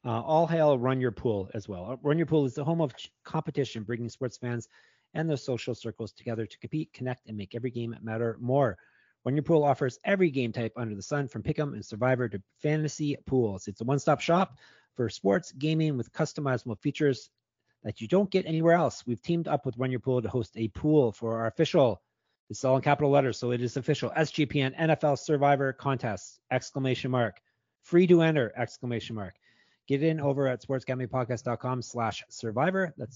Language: English